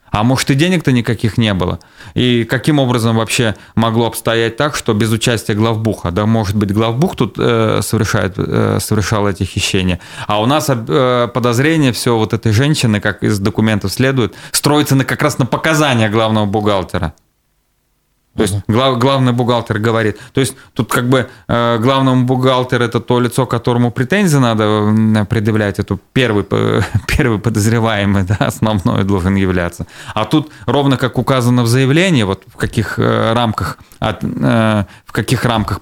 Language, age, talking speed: Russian, 20-39, 150 wpm